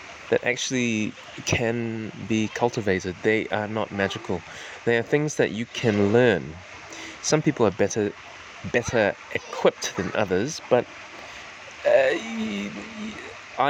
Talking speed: 115 wpm